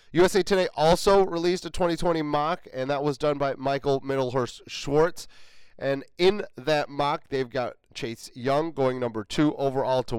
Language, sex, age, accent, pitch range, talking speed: English, male, 30-49, American, 130-160 Hz, 160 wpm